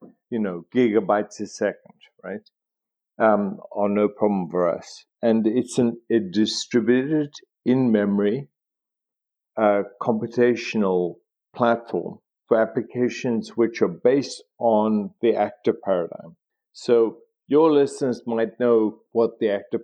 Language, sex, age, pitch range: English, male, 50-69, 105-125 Hz